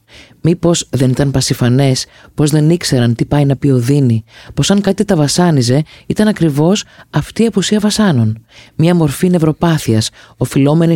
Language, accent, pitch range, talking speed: Greek, native, 120-155 Hz, 155 wpm